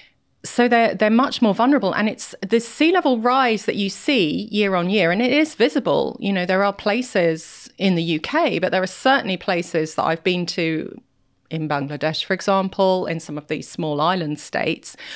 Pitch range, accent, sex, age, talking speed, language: 165-215 Hz, British, female, 30-49, 200 wpm, English